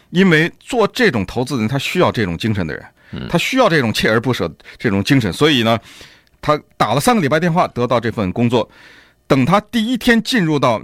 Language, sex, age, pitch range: Chinese, male, 50-69, 115-190 Hz